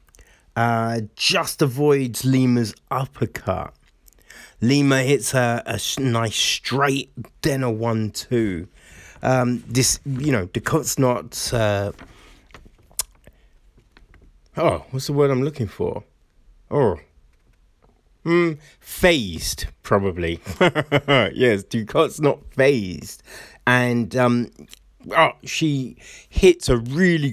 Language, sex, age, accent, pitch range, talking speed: English, male, 30-49, British, 105-135 Hz, 95 wpm